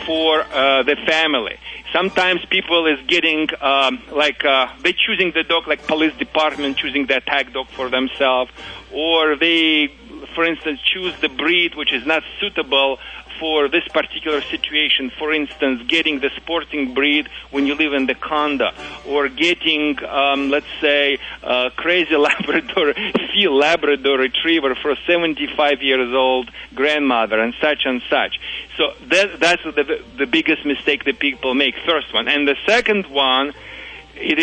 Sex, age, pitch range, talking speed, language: male, 40-59, 135-170 Hz, 155 wpm, English